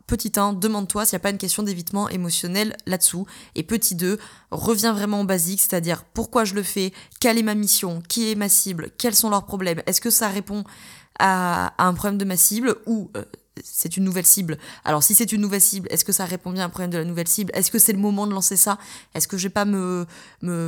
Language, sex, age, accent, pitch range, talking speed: French, female, 20-39, French, 175-205 Hz, 245 wpm